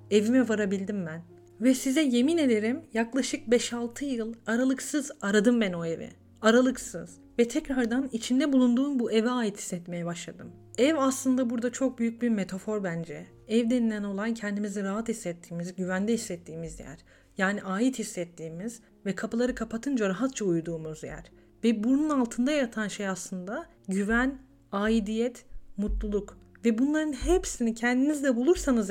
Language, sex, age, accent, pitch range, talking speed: Turkish, female, 40-59, native, 195-255 Hz, 135 wpm